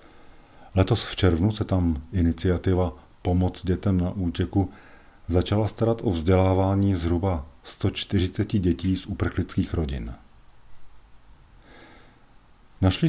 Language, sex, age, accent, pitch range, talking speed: Czech, male, 50-69, native, 85-105 Hz, 95 wpm